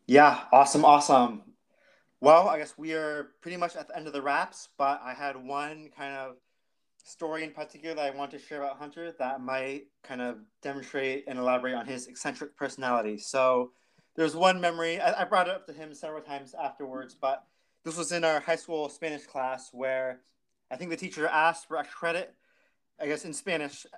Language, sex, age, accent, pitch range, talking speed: English, male, 20-39, American, 130-160 Hz, 200 wpm